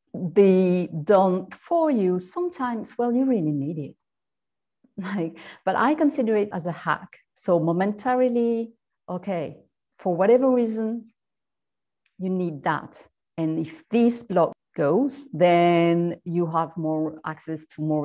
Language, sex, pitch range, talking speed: English, female, 160-220 Hz, 130 wpm